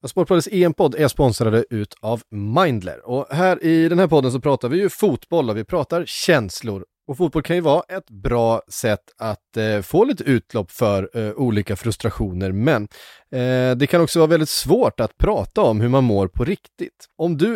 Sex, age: male, 30-49